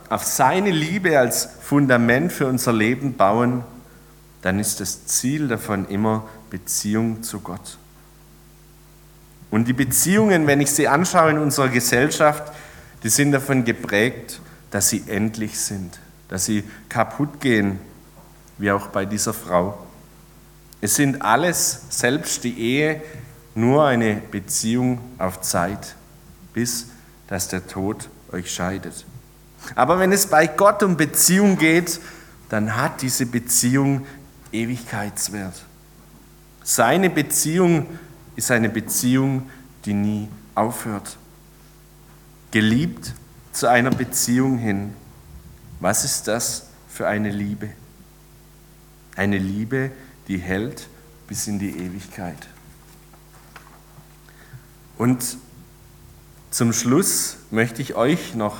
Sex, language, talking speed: male, German, 110 wpm